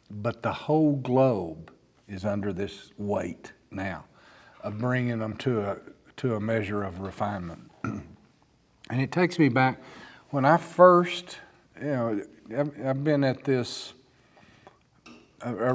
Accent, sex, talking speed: American, male, 130 wpm